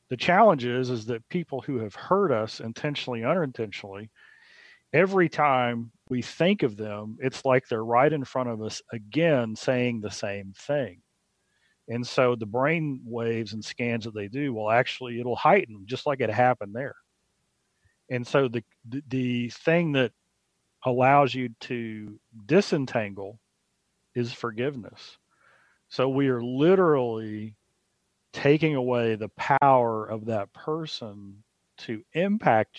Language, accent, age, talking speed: English, American, 40-59, 135 wpm